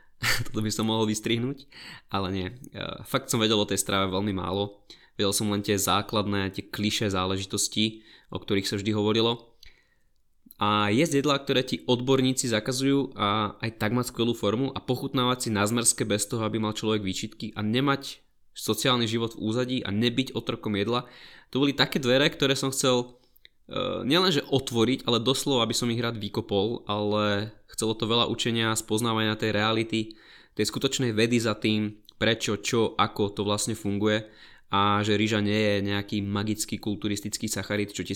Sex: male